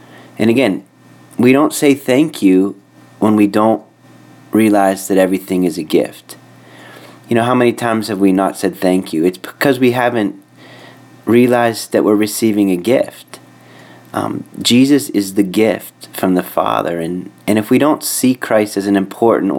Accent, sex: American, male